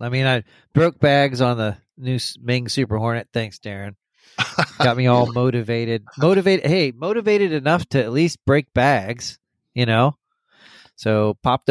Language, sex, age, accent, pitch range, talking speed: English, male, 30-49, American, 110-130 Hz, 155 wpm